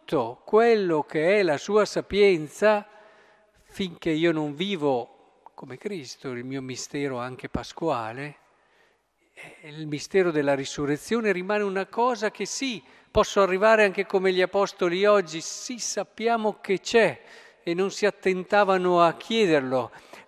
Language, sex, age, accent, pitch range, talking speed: Italian, male, 50-69, native, 160-210 Hz, 125 wpm